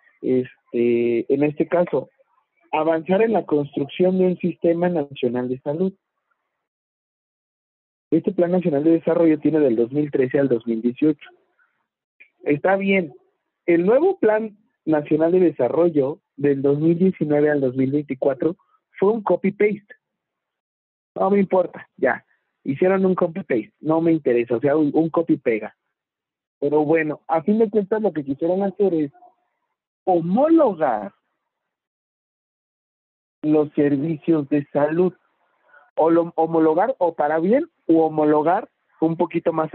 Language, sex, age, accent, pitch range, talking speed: Spanish, male, 50-69, Mexican, 145-185 Hz, 125 wpm